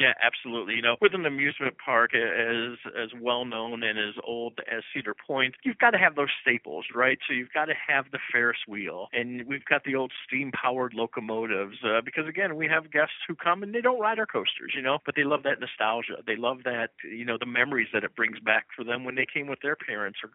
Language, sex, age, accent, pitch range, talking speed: English, male, 50-69, American, 120-145 Hz, 240 wpm